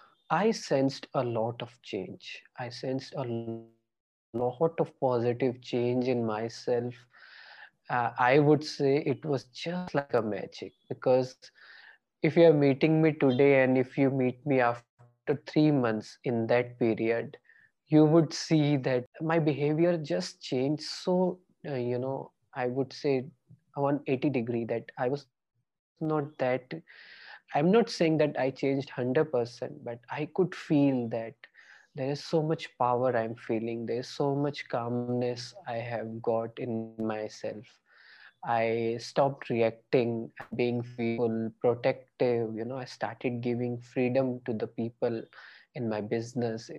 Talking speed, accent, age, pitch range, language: 140 wpm, Indian, 20-39, 115-145 Hz, English